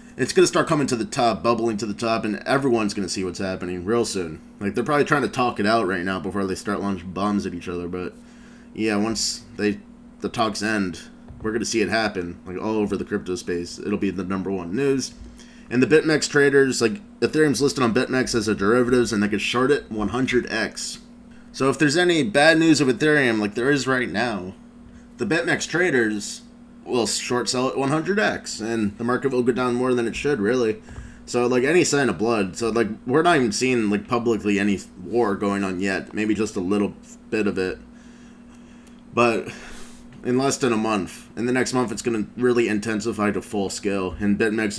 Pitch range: 100-130 Hz